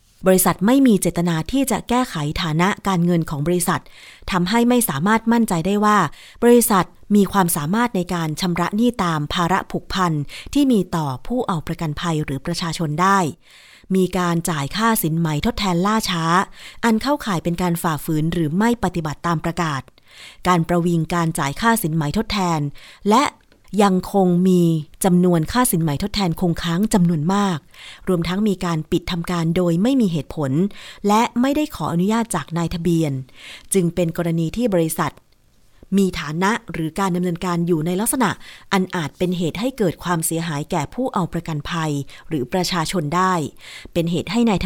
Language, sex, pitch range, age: Thai, female, 165-200 Hz, 30-49